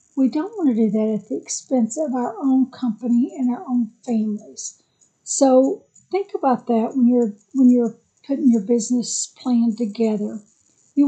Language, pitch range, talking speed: English, 225-255 Hz, 170 wpm